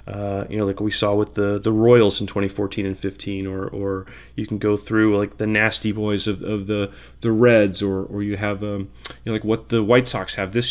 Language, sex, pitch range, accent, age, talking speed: English, male, 100-120 Hz, American, 30-49, 240 wpm